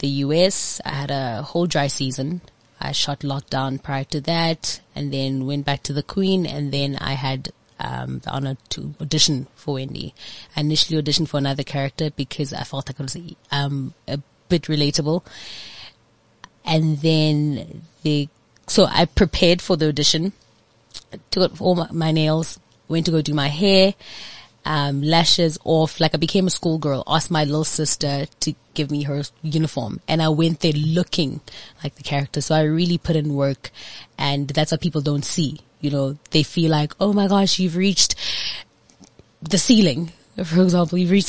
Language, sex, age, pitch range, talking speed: English, female, 20-39, 140-165 Hz, 180 wpm